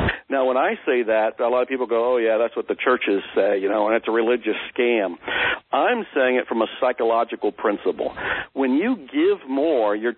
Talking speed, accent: 210 wpm, American